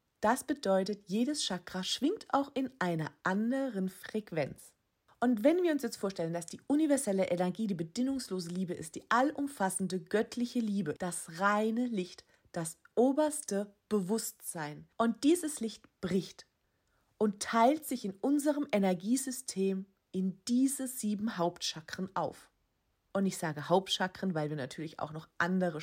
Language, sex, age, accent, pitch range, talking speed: German, female, 30-49, German, 165-230 Hz, 135 wpm